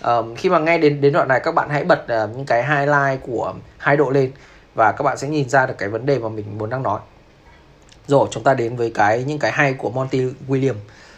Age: 20-39